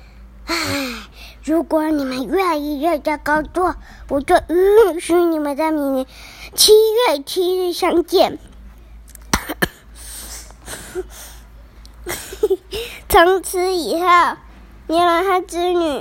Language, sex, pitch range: Chinese, male, 260-360 Hz